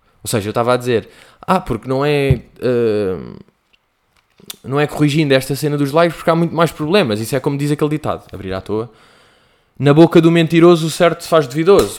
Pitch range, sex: 115-170 Hz, male